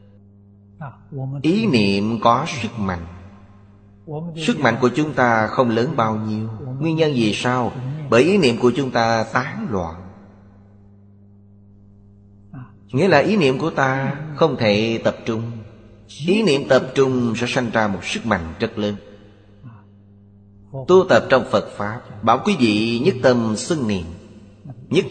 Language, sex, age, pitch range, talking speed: Vietnamese, male, 30-49, 100-130 Hz, 145 wpm